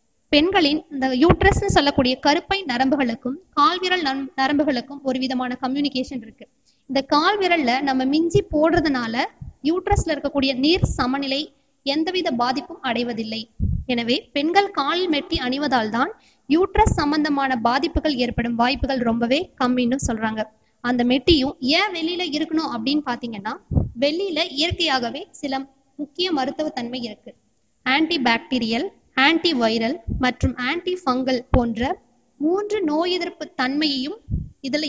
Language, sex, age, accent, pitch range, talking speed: Tamil, female, 20-39, native, 255-315 Hz, 100 wpm